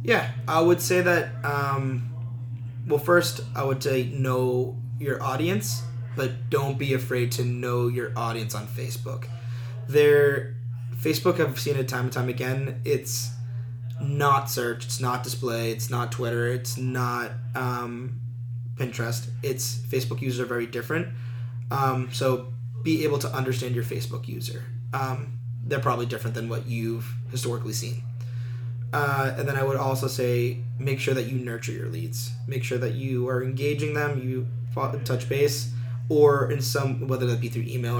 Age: 20-39